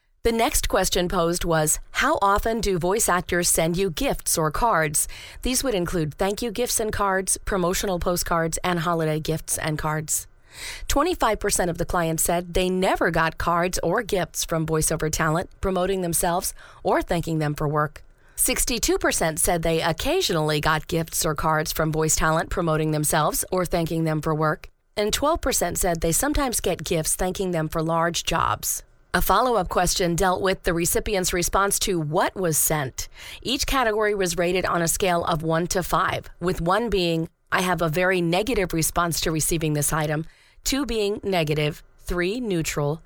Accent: American